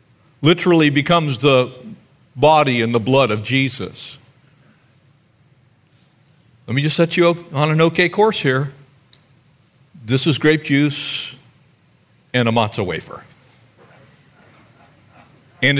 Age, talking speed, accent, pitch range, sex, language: 50-69, 110 wpm, American, 120-145 Hz, male, English